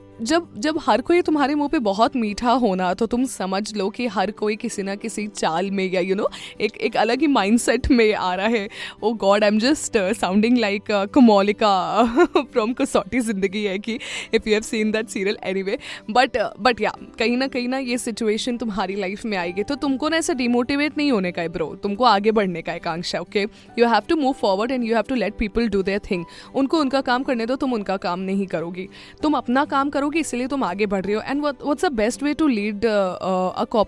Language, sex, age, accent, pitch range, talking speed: Hindi, female, 20-39, native, 205-280 Hz, 205 wpm